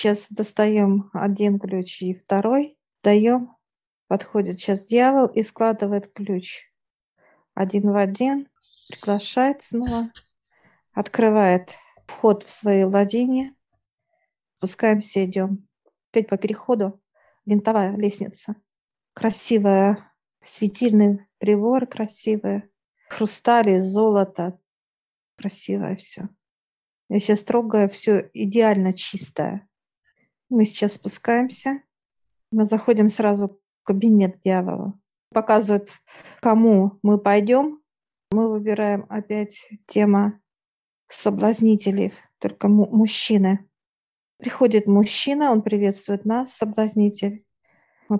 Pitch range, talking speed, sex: 200-225 Hz, 90 wpm, female